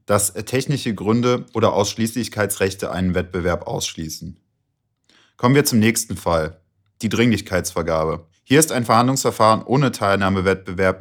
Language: German